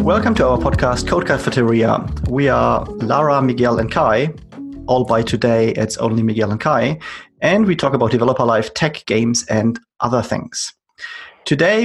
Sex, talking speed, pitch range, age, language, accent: male, 155 wpm, 115-135 Hz, 30-49, English, German